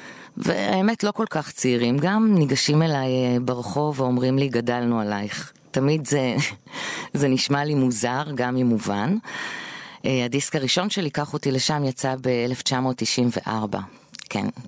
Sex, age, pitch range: female, 20-39, 115-145 Hz